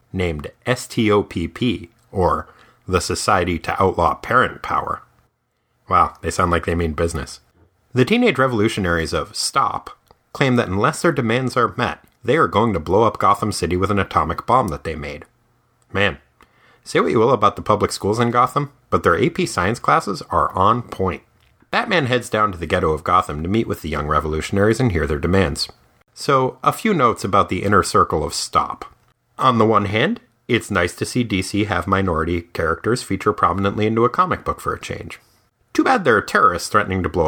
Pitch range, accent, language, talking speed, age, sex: 90-130 Hz, American, English, 190 wpm, 30-49, male